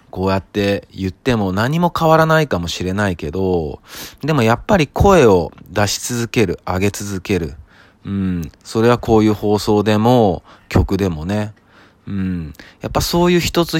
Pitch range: 90-120 Hz